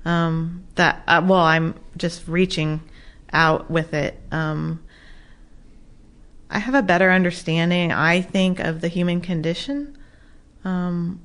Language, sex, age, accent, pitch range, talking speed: English, female, 30-49, American, 170-195 Hz, 125 wpm